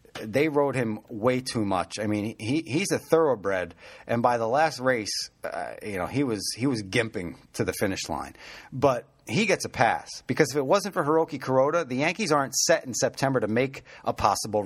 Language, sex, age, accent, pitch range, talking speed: English, male, 30-49, American, 120-155 Hz, 210 wpm